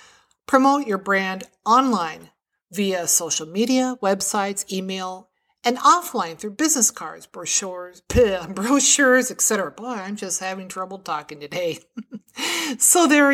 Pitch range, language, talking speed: 175-245 Hz, English, 120 wpm